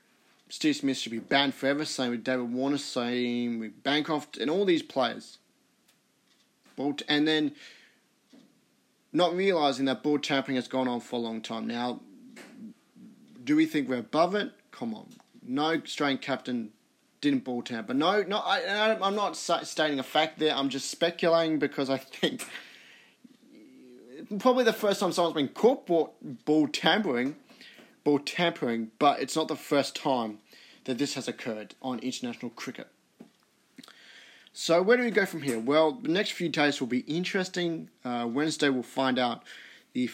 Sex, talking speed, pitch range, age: male, 160 wpm, 130-180 Hz, 30-49